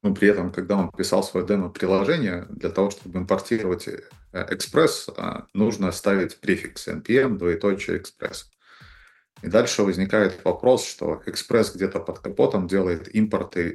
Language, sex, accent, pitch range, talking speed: Russian, male, native, 90-100 Hz, 130 wpm